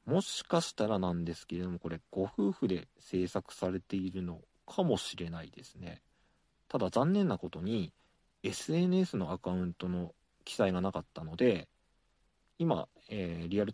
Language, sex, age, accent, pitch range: Japanese, male, 40-59, native, 85-115 Hz